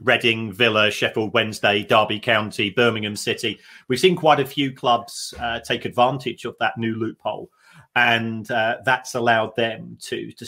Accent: British